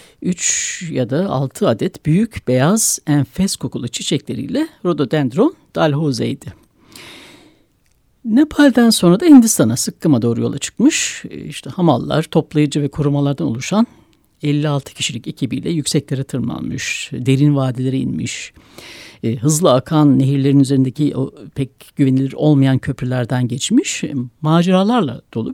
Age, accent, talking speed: 60-79, native, 105 wpm